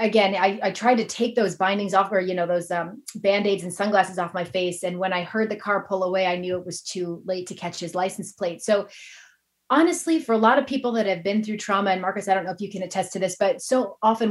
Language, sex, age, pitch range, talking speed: English, female, 30-49, 185-225 Hz, 275 wpm